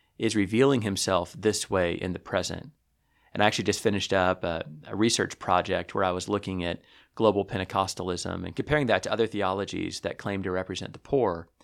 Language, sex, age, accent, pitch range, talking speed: English, male, 30-49, American, 95-110 Hz, 190 wpm